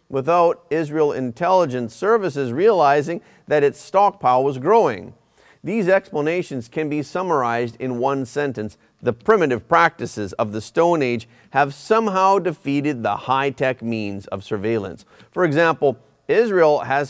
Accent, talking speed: American, 130 wpm